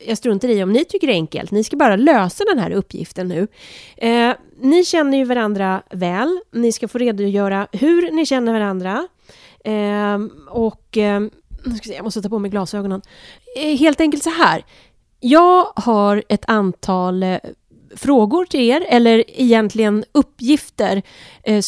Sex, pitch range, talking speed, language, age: female, 190-260 Hz, 155 wpm, Swedish, 30-49